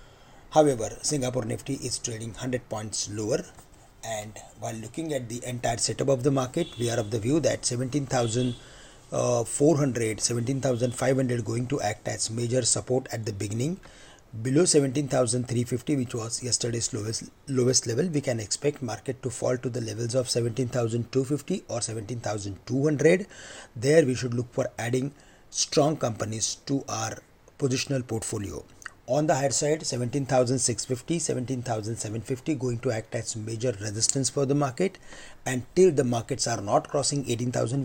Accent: Indian